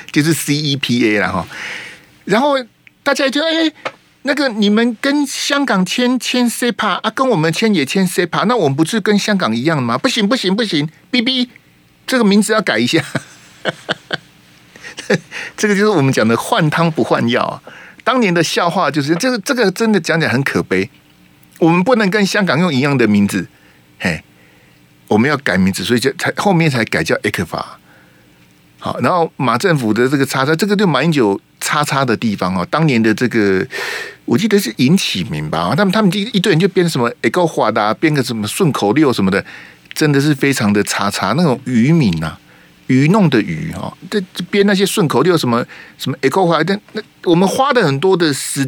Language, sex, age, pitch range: Chinese, male, 50-69, 125-205 Hz